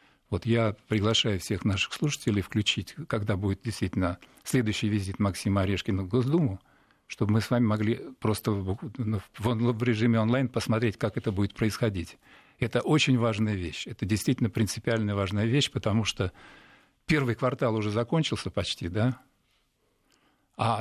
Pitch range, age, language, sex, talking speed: 105-130 Hz, 50-69, Russian, male, 140 wpm